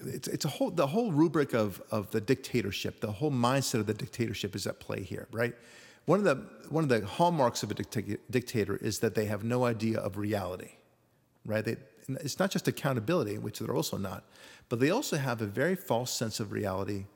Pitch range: 110-135 Hz